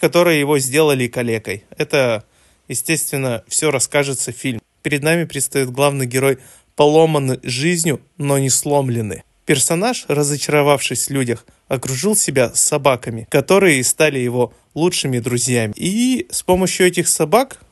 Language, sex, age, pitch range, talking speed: Russian, male, 20-39, 125-160 Hz, 125 wpm